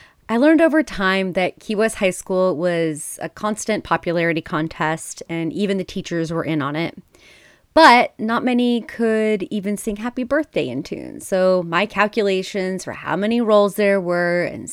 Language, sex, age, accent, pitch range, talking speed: English, female, 30-49, American, 165-220 Hz, 170 wpm